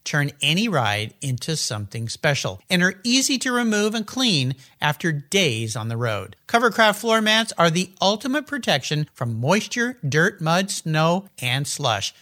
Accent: American